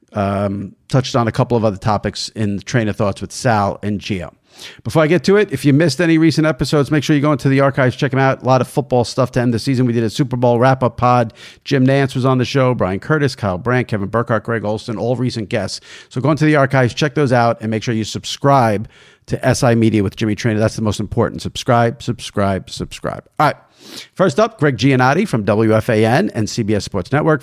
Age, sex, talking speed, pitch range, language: 50-69, male, 240 wpm, 110-150 Hz, English